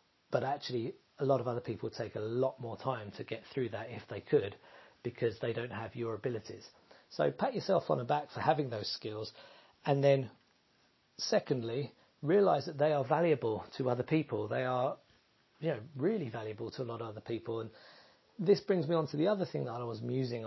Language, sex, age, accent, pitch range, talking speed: English, male, 40-59, British, 115-145 Hz, 210 wpm